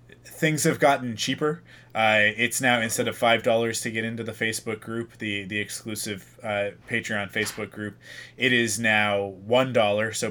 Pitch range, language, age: 105-120 Hz, English, 20-39